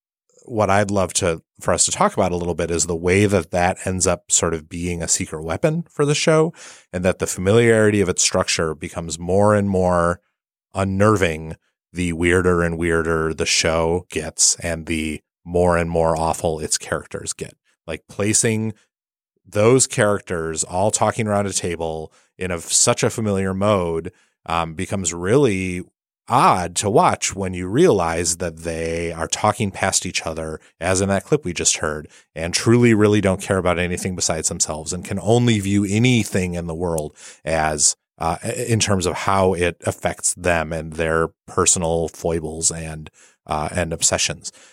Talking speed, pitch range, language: 170 wpm, 85-100 Hz, English